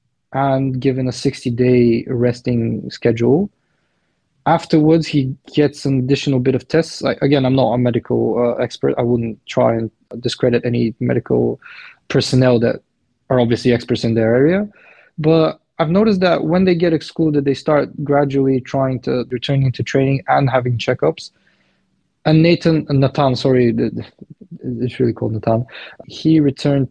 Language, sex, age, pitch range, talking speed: English, male, 20-39, 120-145 Hz, 145 wpm